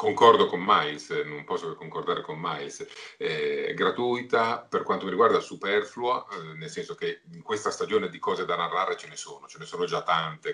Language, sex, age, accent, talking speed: Italian, male, 40-59, native, 195 wpm